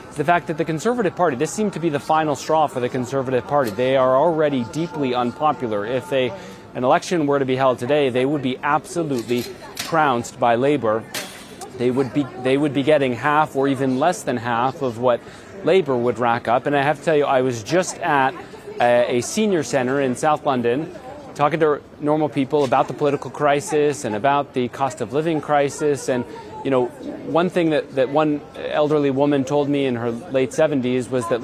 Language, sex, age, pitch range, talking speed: English, male, 30-49, 130-155 Hz, 205 wpm